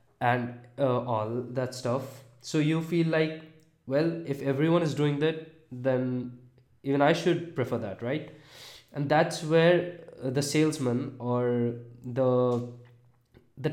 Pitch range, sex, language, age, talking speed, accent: 120-145 Hz, male, English, 20-39, 135 wpm, Indian